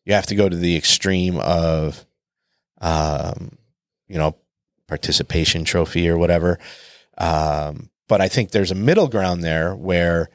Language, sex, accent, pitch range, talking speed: English, male, American, 80-105 Hz, 145 wpm